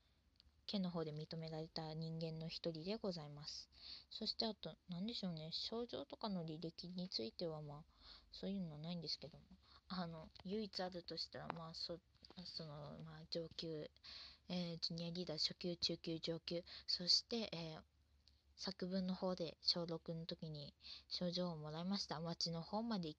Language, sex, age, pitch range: Japanese, female, 20-39, 155-195 Hz